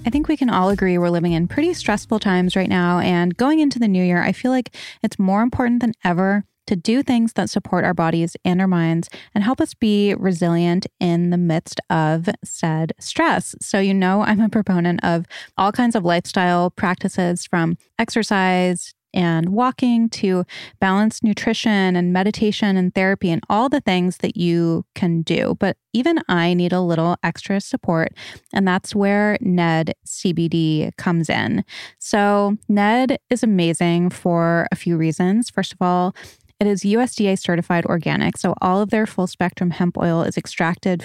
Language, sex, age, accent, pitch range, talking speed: English, female, 20-39, American, 175-210 Hz, 175 wpm